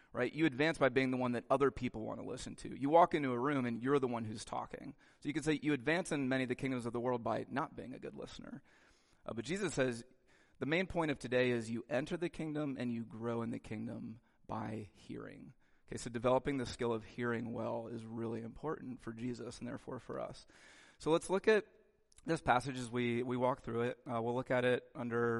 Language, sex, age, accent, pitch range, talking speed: English, male, 30-49, American, 115-140 Hz, 240 wpm